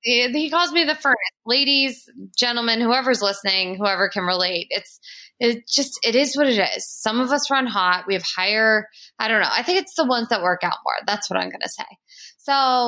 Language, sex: English, female